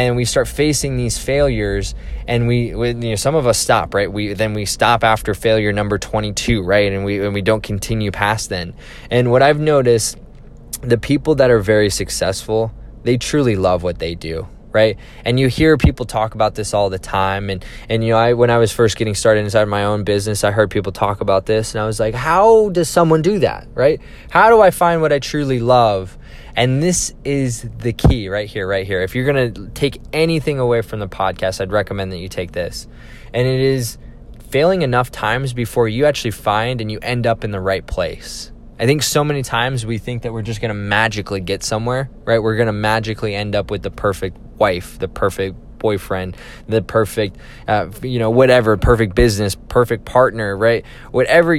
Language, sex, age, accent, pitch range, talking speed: English, male, 20-39, American, 105-125 Hz, 215 wpm